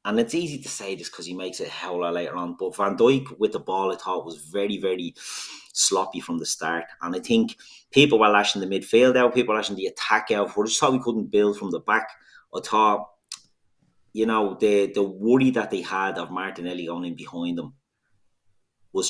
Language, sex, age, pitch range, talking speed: English, male, 30-49, 95-125 Hz, 225 wpm